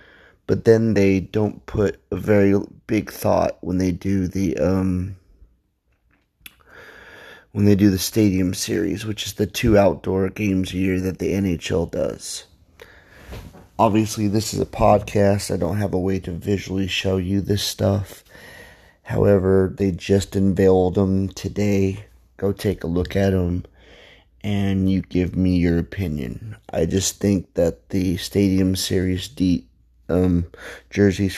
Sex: male